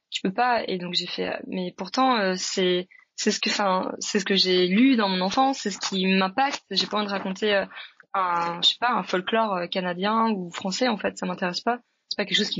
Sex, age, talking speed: female, 20-39, 235 wpm